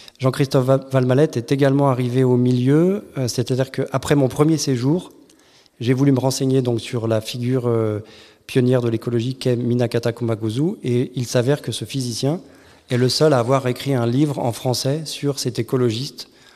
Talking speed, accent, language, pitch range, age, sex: 165 wpm, French, French, 115-135 Hz, 40-59, male